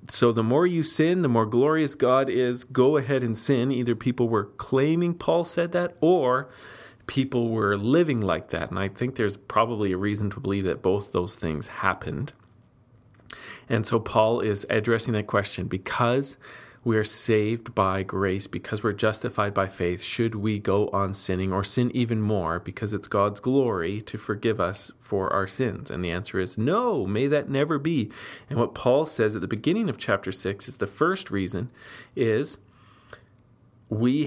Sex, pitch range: male, 100-125 Hz